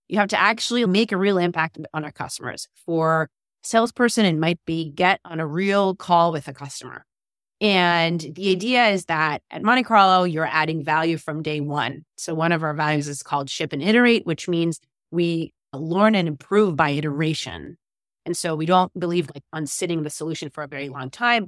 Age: 30-49